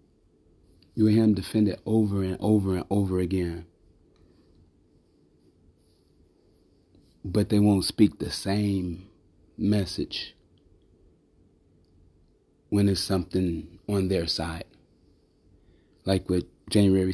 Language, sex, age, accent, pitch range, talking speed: English, male, 30-49, American, 85-100 Hz, 95 wpm